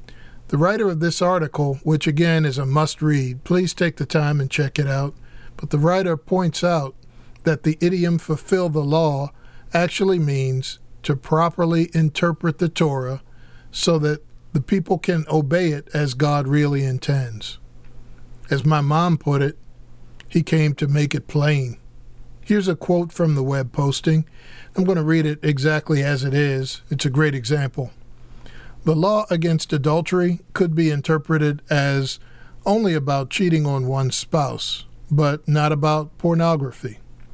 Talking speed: 155 wpm